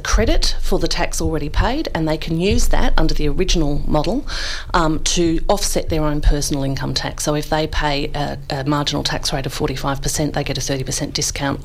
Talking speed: 200 wpm